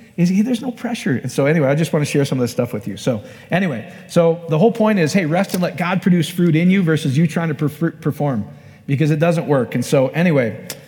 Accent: American